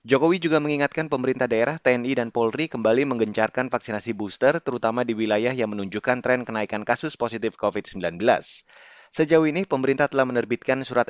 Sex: male